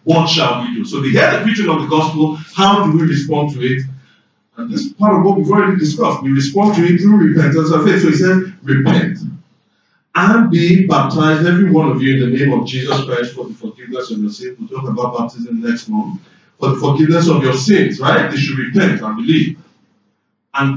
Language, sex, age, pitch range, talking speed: English, male, 50-69, 155-205 Hz, 220 wpm